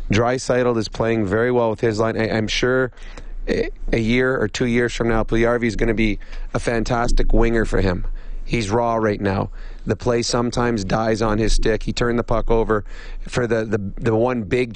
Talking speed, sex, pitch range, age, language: 205 wpm, male, 110-125 Hz, 30-49, English